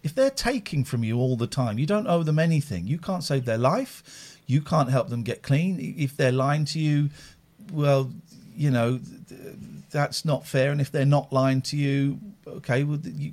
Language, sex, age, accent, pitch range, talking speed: English, male, 50-69, British, 130-170 Hz, 195 wpm